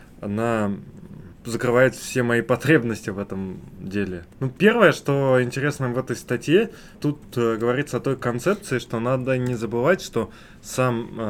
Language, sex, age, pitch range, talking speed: Russian, male, 20-39, 100-120 Hz, 140 wpm